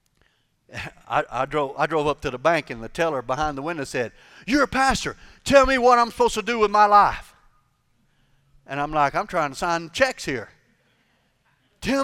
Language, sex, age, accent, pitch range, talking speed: English, male, 50-69, American, 170-255 Hz, 195 wpm